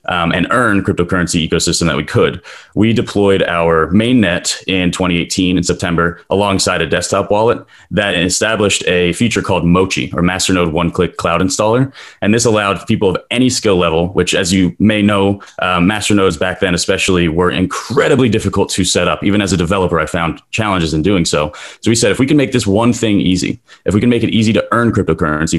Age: 30-49